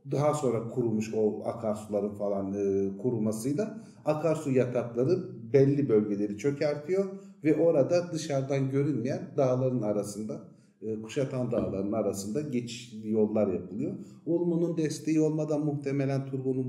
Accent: native